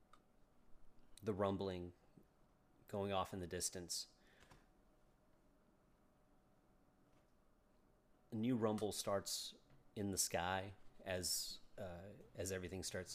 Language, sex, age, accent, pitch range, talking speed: English, male, 30-49, American, 85-105 Hz, 85 wpm